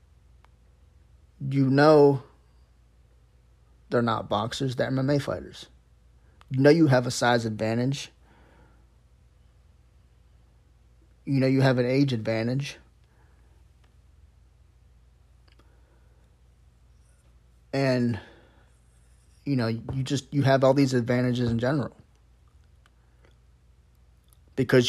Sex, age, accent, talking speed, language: male, 30-49, American, 85 wpm, English